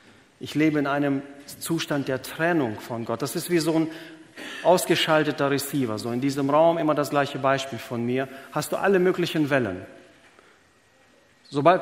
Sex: male